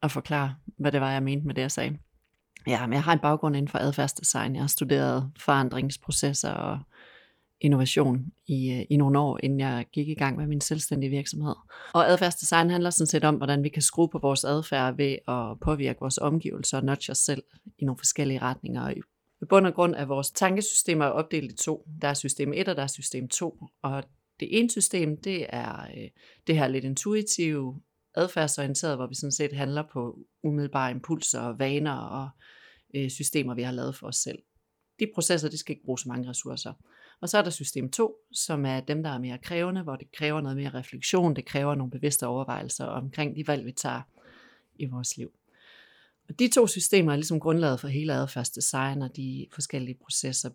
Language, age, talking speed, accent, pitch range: Danish, 30-49, 200 wpm, native, 135-160 Hz